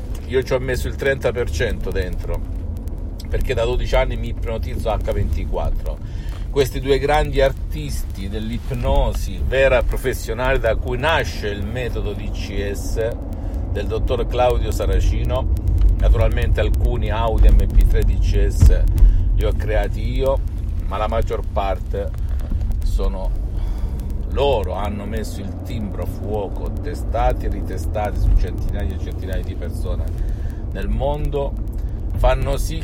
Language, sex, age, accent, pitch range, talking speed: Italian, male, 50-69, native, 85-110 Hz, 120 wpm